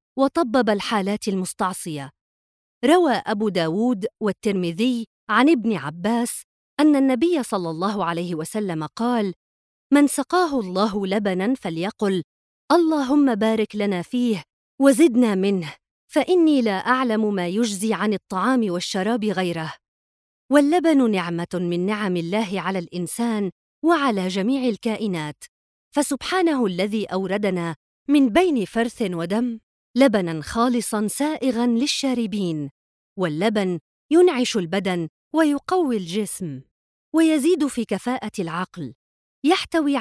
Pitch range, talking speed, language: 185-265 Hz, 100 wpm, Arabic